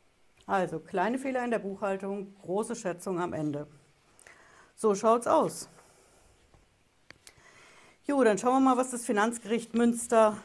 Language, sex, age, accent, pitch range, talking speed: German, female, 60-79, German, 170-210 Hz, 130 wpm